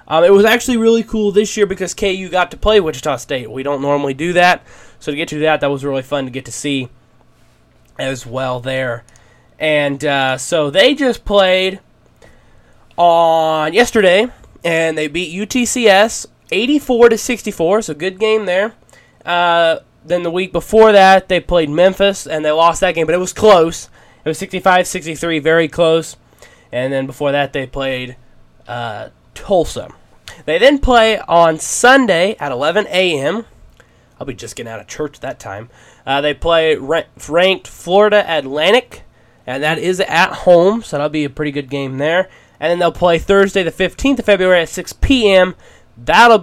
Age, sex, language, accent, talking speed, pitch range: 20-39, male, English, American, 175 wpm, 145-205 Hz